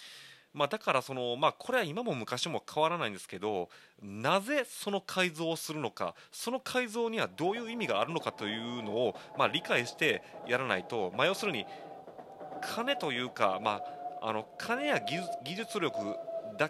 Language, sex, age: Japanese, male, 30-49